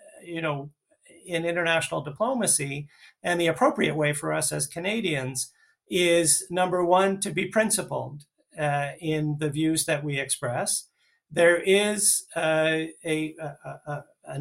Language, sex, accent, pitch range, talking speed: English, male, American, 145-175 Hz, 125 wpm